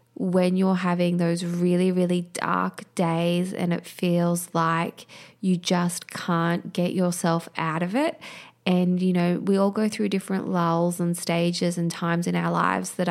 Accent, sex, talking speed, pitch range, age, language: Australian, female, 170 wpm, 170-185 Hz, 20-39, English